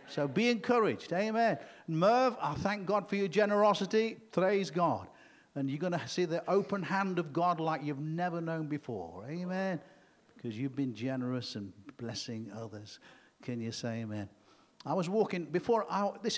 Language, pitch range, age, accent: English, 130-190 Hz, 50-69, British